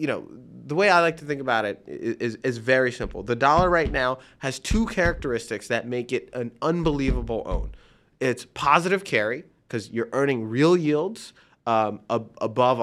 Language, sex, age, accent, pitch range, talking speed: English, male, 30-49, American, 120-175 Hz, 180 wpm